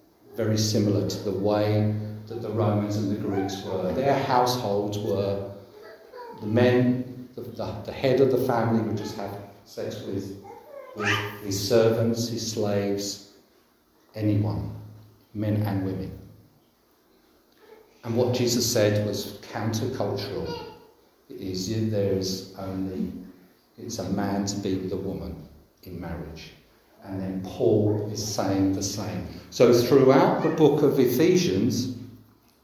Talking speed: 130 wpm